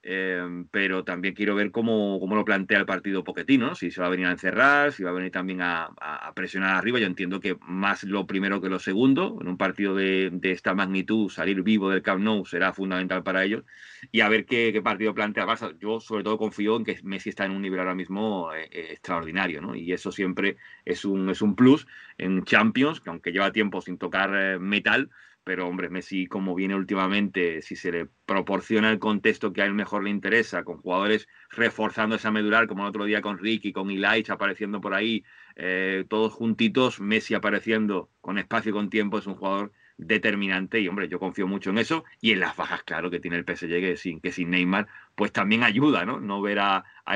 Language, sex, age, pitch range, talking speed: Spanish, male, 30-49, 95-110 Hz, 220 wpm